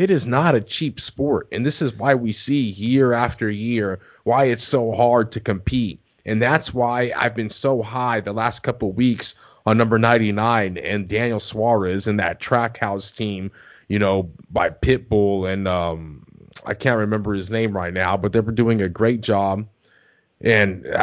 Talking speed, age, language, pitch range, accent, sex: 175 wpm, 30-49, English, 110-130 Hz, American, male